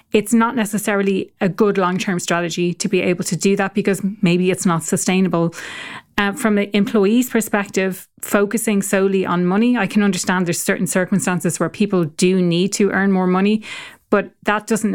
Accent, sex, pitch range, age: Irish, female, 185-210 Hz, 30-49